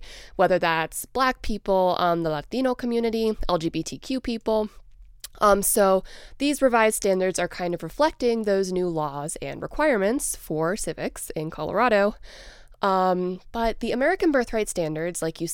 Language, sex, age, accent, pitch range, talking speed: English, female, 20-39, American, 170-230 Hz, 140 wpm